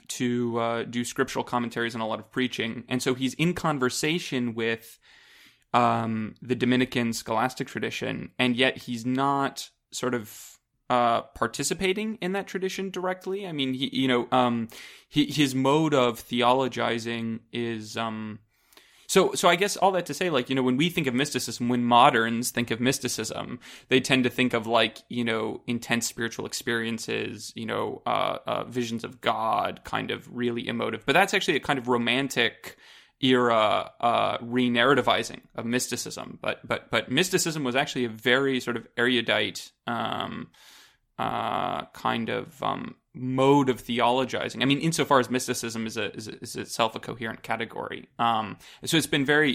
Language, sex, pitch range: English, male, 115-130 Hz